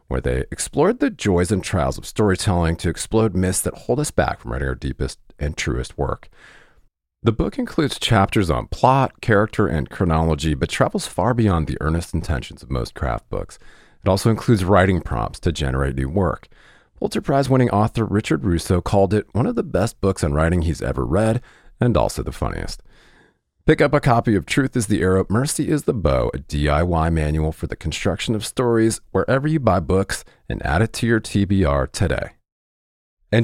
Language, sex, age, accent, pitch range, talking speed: English, male, 40-59, American, 80-110 Hz, 190 wpm